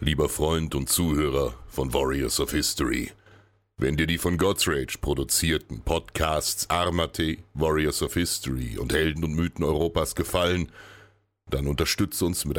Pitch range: 70-100 Hz